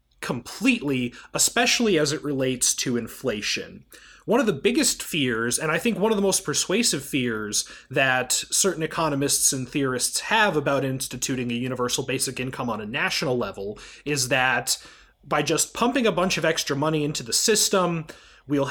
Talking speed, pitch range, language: 165 wpm, 130-170 Hz, English